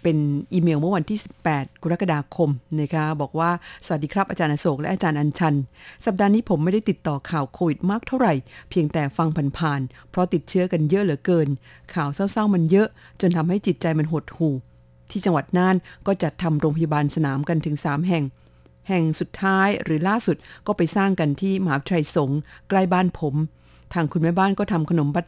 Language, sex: Thai, female